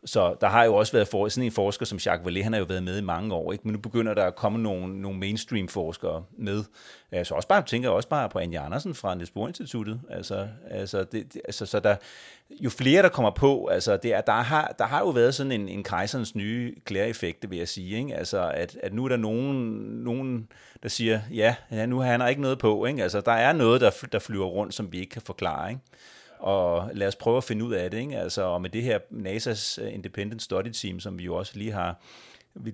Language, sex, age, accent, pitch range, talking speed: Danish, male, 30-49, native, 95-115 Hz, 240 wpm